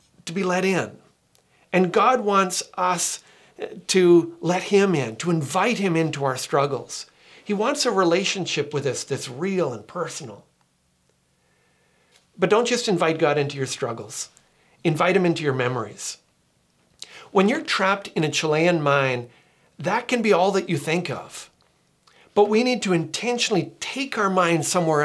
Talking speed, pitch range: 155 wpm, 145-190 Hz